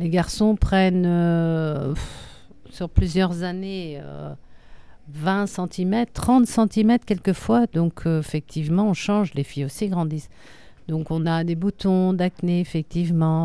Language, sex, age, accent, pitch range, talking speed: French, female, 50-69, French, 160-200 Hz, 135 wpm